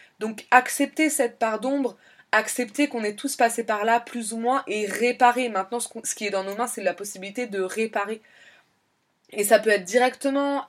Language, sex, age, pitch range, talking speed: French, female, 20-39, 190-235 Hz, 190 wpm